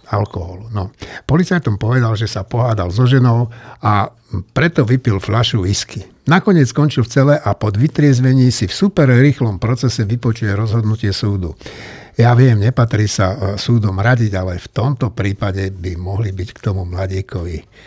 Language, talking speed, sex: Slovak, 150 wpm, male